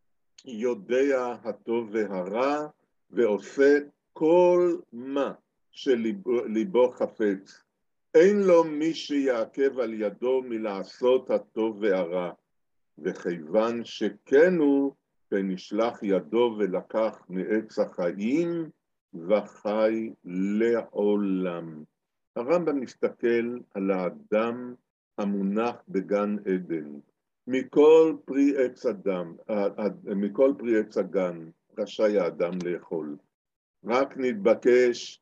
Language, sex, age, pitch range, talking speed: Hebrew, male, 50-69, 100-135 Hz, 80 wpm